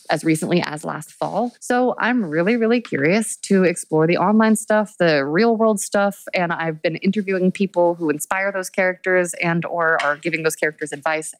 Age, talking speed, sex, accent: 20-39, 185 wpm, female, American